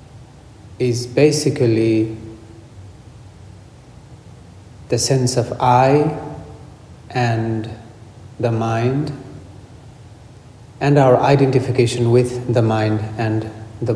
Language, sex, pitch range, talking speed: English, male, 110-125 Hz, 75 wpm